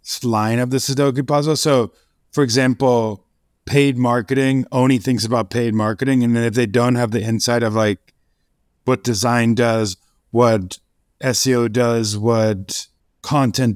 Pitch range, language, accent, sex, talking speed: 105-125 Hz, English, American, male, 145 wpm